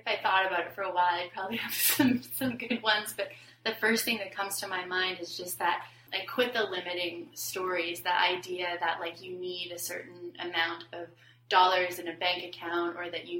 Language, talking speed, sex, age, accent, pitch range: English, 225 wpm, female, 20-39, American, 165-185 Hz